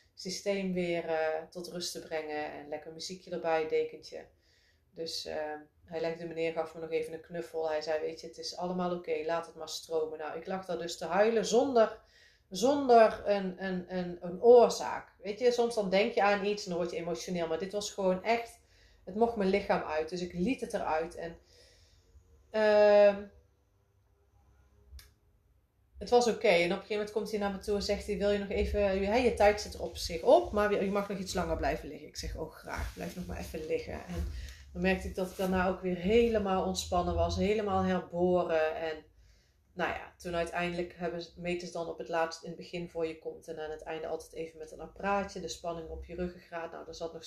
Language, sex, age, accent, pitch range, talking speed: Dutch, female, 30-49, Dutch, 160-205 Hz, 225 wpm